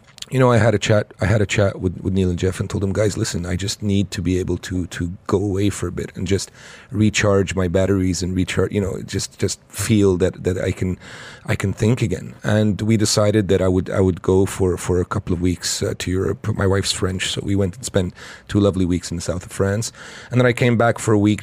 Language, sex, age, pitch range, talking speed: English, male, 30-49, 95-115 Hz, 265 wpm